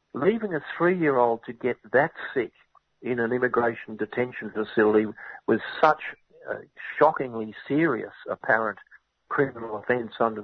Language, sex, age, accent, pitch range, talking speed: English, male, 50-69, Australian, 110-125 Hz, 120 wpm